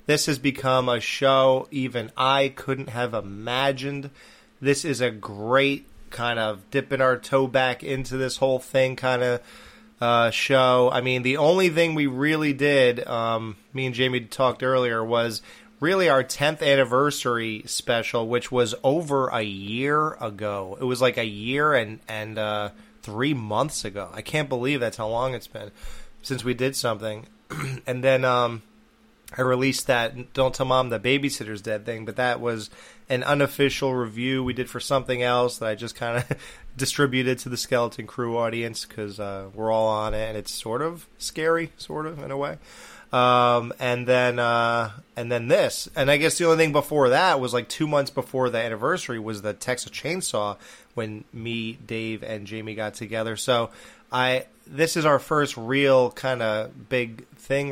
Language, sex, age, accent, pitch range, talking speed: English, male, 30-49, American, 115-135 Hz, 180 wpm